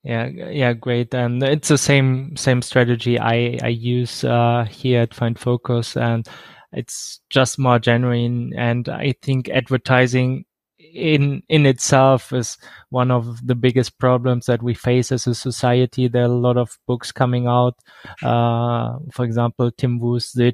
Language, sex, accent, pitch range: English, male, German, 120-130 Hz